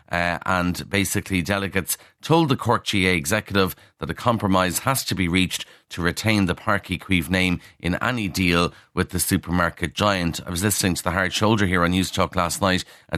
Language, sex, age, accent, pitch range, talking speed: English, male, 30-49, Irish, 85-105 Hz, 190 wpm